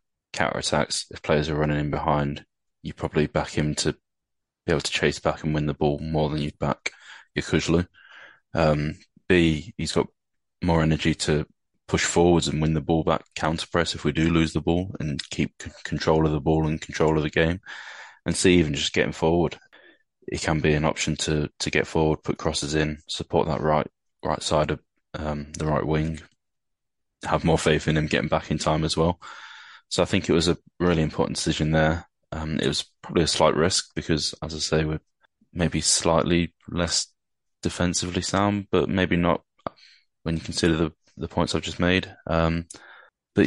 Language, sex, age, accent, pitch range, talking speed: English, male, 20-39, British, 75-85 Hz, 195 wpm